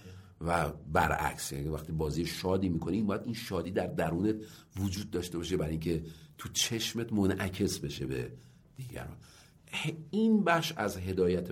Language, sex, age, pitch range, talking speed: Persian, male, 50-69, 80-105 Hz, 135 wpm